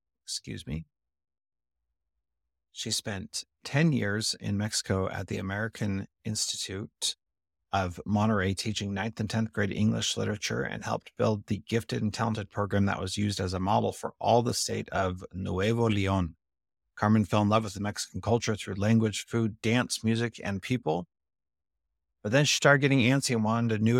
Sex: male